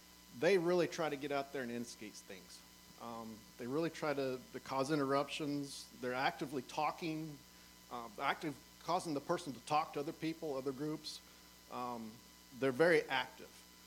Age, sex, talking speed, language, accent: 40-59, male, 160 wpm, English, American